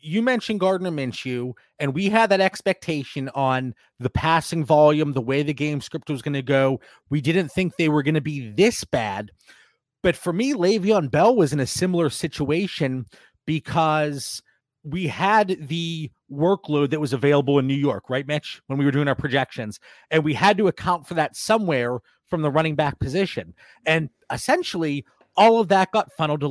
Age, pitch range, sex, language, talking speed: 30-49, 145-200 Hz, male, English, 185 wpm